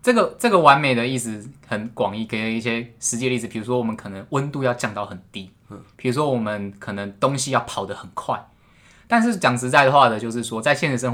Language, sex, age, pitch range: Chinese, male, 20-39, 100-130 Hz